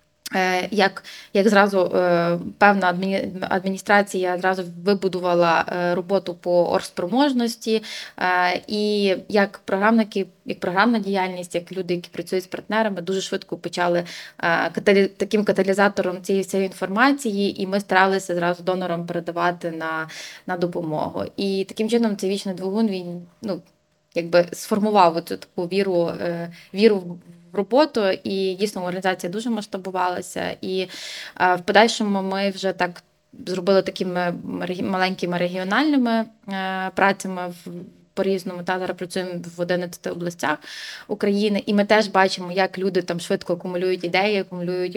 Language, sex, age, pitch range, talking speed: Ukrainian, female, 20-39, 180-200 Hz, 115 wpm